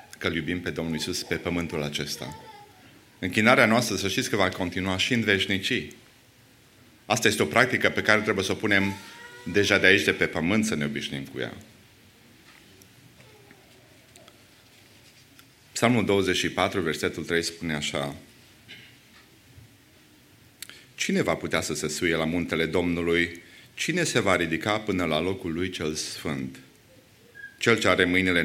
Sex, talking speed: male, 145 wpm